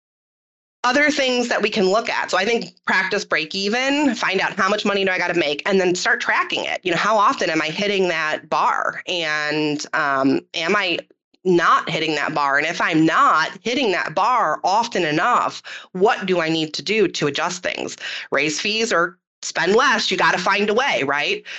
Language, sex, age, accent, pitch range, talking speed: English, female, 30-49, American, 160-205 Hz, 210 wpm